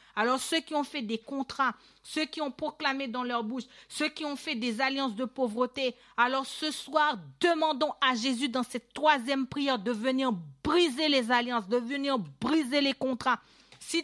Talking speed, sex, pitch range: 185 wpm, female, 250-300 Hz